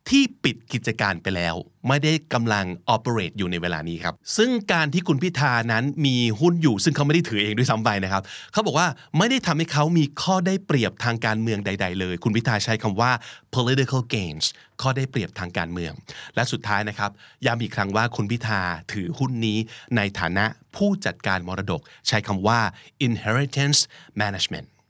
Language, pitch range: Thai, 110-160 Hz